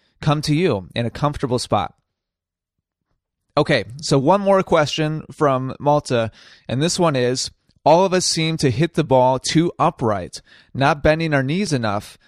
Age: 30-49